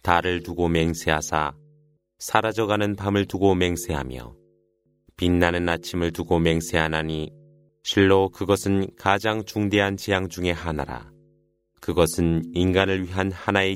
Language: Korean